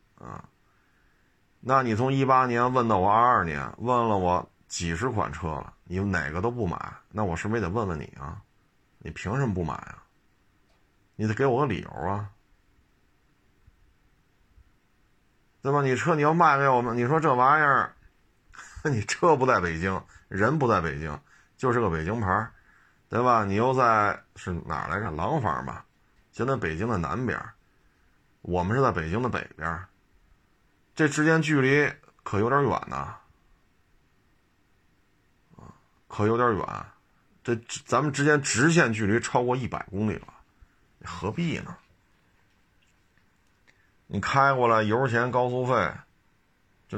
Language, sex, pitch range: Chinese, male, 95-130 Hz